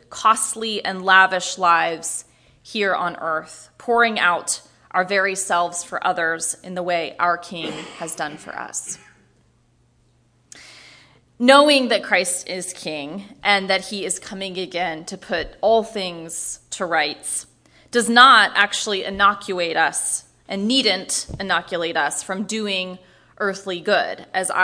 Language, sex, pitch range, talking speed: English, female, 180-220 Hz, 130 wpm